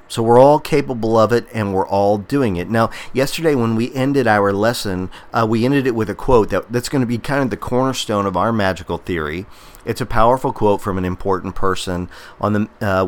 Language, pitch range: English, 95-120 Hz